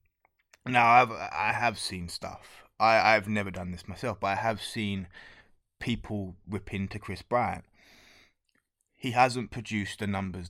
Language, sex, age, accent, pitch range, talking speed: English, male, 20-39, British, 95-115 Hz, 150 wpm